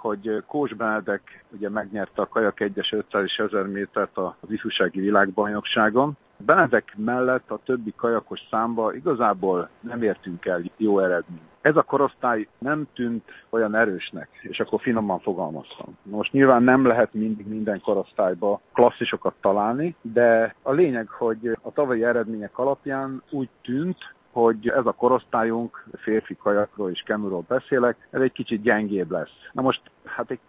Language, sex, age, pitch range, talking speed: Hungarian, male, 50-69, 105-130 Hz, 145 wpm